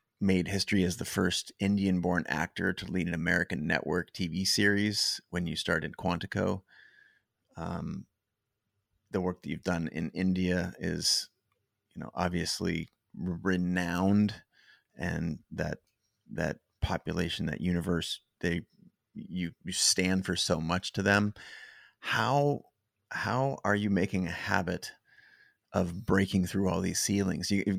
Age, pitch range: 30-49, 90-110 Hz